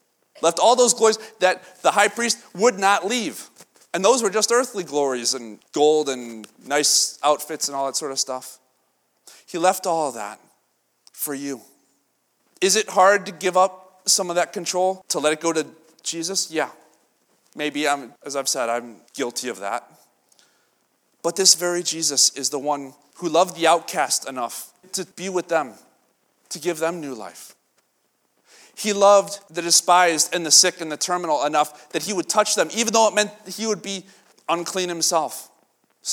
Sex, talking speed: male, 180 wpm